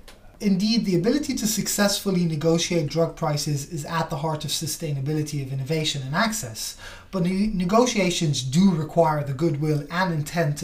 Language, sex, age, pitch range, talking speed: English, male, 30-49, 150-185 Hz, 150 wpm